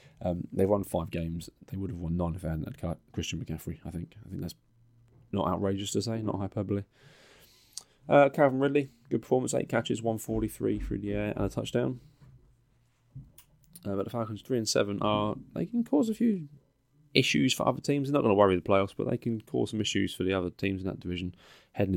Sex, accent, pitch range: male, British, 90-120 Hz